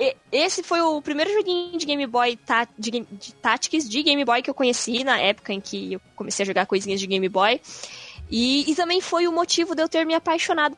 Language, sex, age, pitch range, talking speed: Portuguese, female, 10-29, 220-290 Hz, 215 wpm